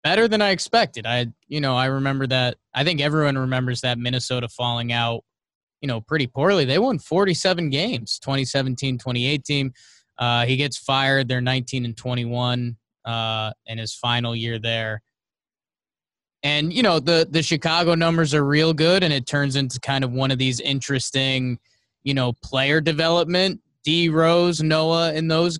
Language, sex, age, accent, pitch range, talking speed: English, male, 20-39, American, 120-150 Hz, 165 wpm